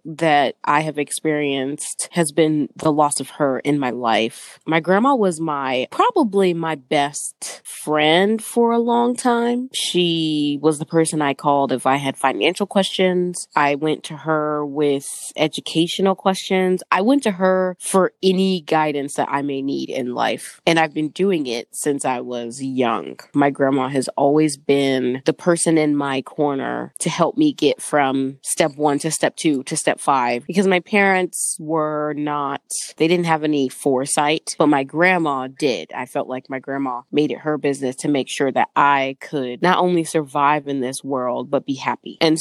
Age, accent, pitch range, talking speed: 20-39, American, 140-180 Hz, 180 wpm